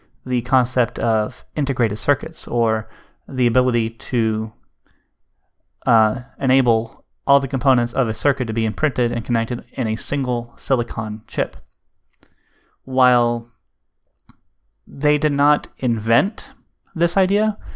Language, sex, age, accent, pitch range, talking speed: English, male, 30-49, American, 115-135 Hz, 115 wpm